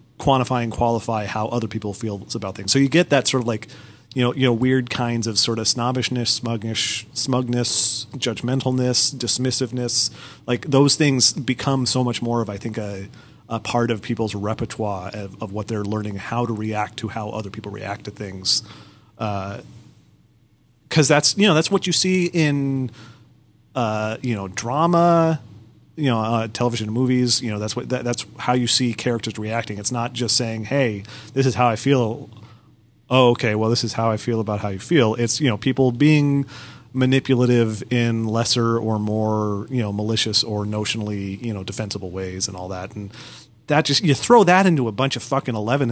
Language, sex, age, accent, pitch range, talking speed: English, male, 30-49, American, 110-130 Hz, 190 wpm